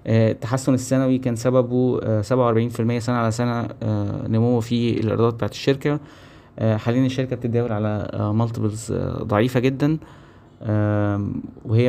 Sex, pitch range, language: male, 110-130 Hz, Arabic